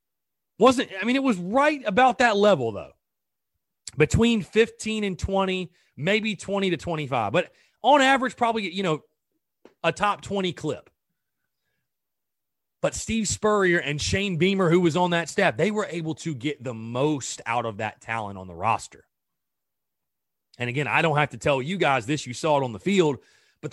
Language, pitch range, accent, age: English, 135-180 Hz, American, 30-49